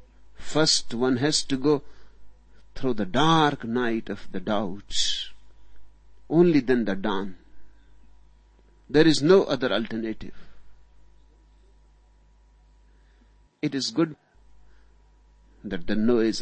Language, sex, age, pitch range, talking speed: Hindi, male, 60-79, 80-130 Hz, 100 wpm